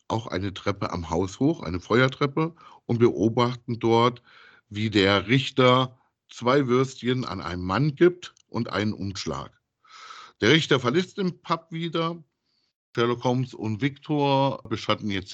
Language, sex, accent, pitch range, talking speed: German, male, German, 105-145 Hz, 135 wpm